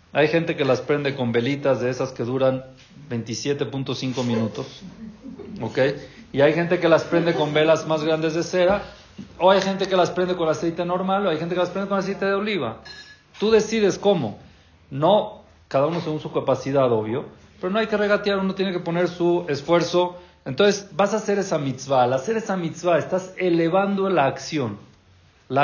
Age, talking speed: 40-59, 190 wpm